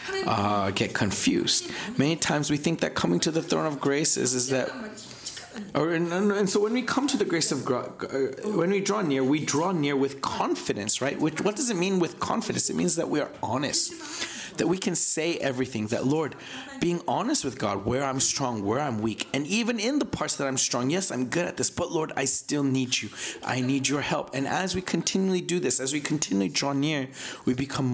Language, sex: English, male